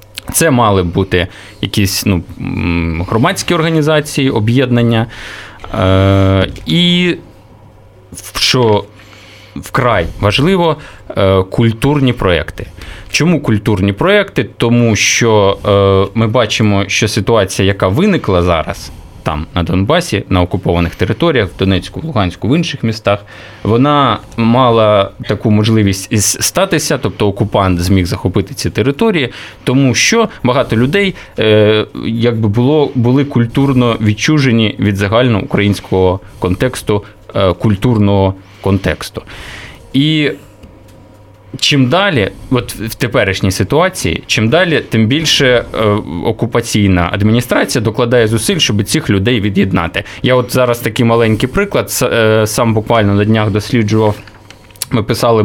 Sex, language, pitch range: male, Ukrainian, 100-125 Hz